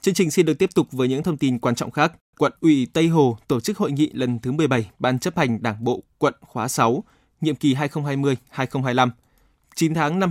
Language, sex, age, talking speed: Vietnamese, male, 20-39, 220 wpm